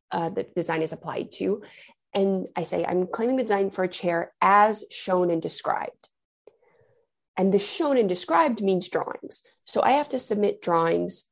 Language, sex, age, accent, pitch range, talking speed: English, female, 20-39, American, 175-245 Hz, 175 wpm